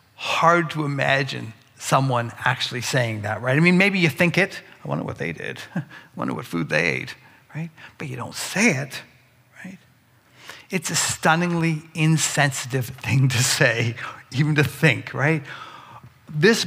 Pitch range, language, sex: 125-170 Hz, English, male